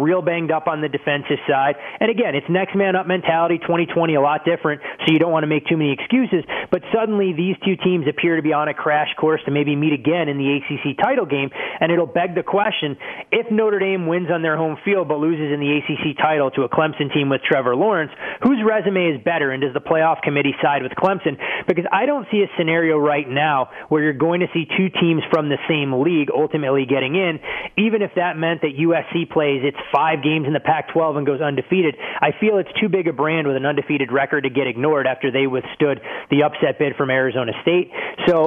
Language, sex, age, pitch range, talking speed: English, male, 30-49, 145-175 Hz, 230 wpm